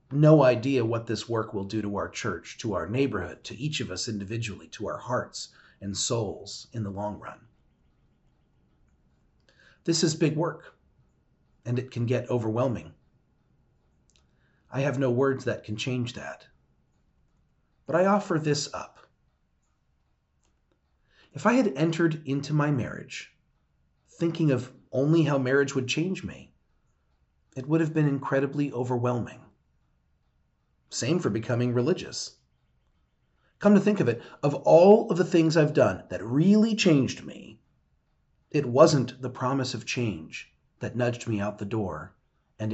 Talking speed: 145 wpm